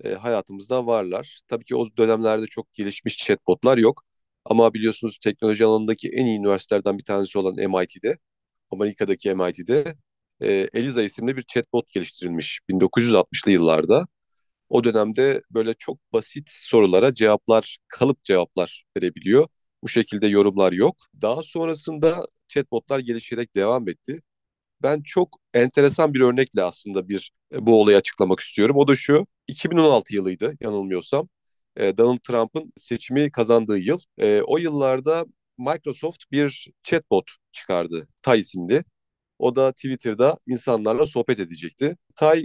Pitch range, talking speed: 105-145 Hz, 125 wpm